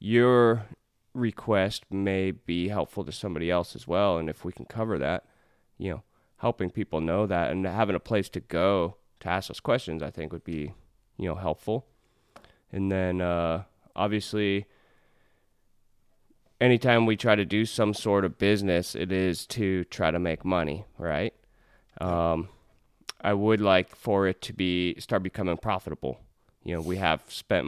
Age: 20-39